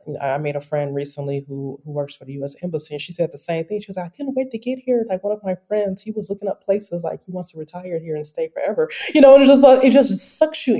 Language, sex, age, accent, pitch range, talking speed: English, female, 30-49, American, 150-215 Hz, 310 wpm